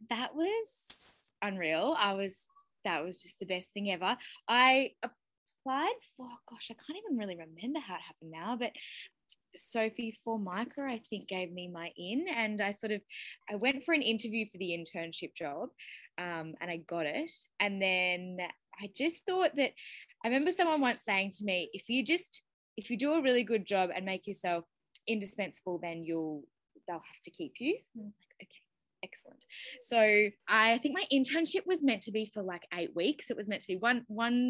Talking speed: 190 wpm